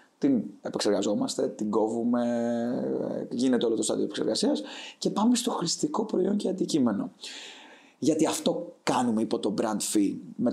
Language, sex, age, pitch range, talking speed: Greek, male, 20-39, 110-185 Hz, 135 wpm